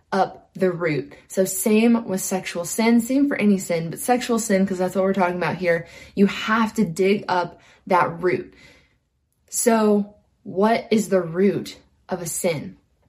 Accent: American